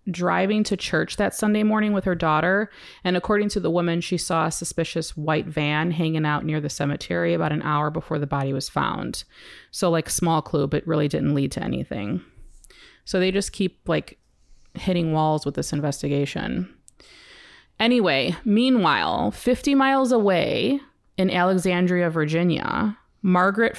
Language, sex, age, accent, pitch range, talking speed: English, female, 30-49, American, 155-200 Hz, 155 wpm